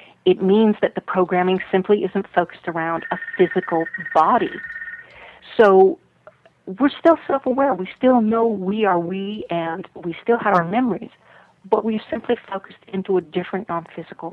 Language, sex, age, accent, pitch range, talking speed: English, female, 50-69, American, 175-230 Hz, 150 wpm